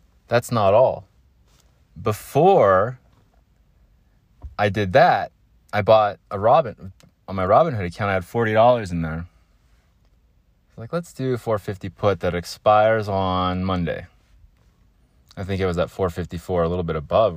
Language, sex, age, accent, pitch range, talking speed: English, male, 20-39, American, 90-115 Hz, 145 wpm